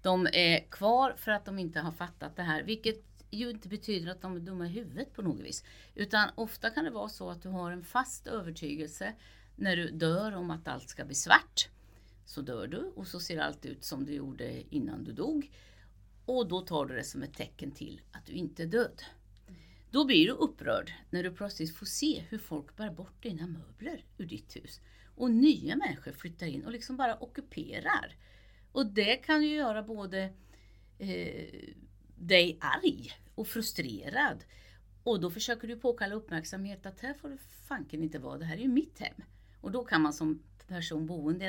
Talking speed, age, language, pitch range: 200 wpm, 50-69, Swedish, 155-215 Hz